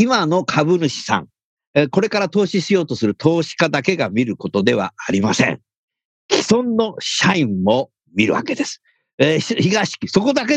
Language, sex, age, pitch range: Japanese, male, 50-69, 145-235 Hz